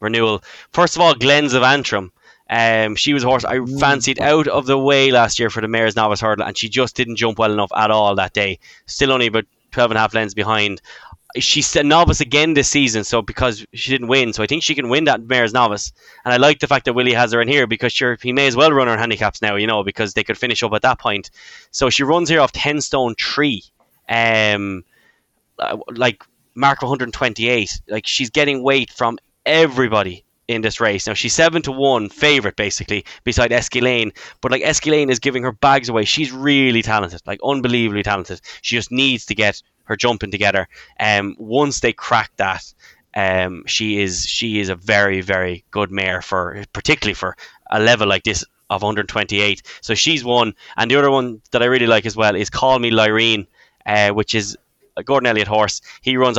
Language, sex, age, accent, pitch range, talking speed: English, male, 10-29, Irish, 105-130 Hz, 205 wpm